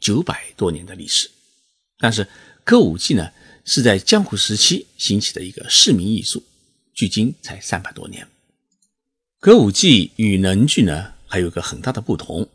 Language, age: Chinese, 50-69